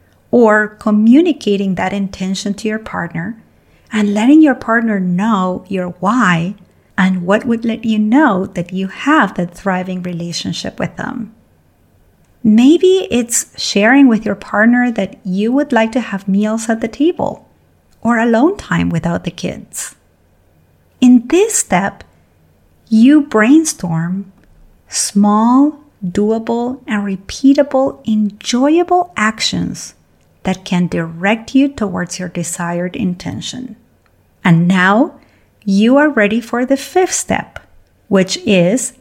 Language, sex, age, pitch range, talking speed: English, female, 30-49, 190-255 Hz, 125 wpm